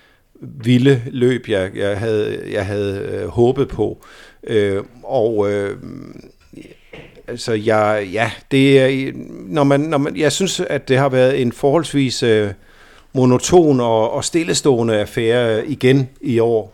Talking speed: 135 wpm